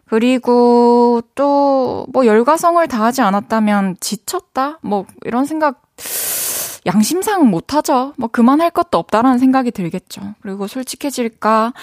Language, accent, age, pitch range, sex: Korean, native, 20-39, 190-270 Hz, female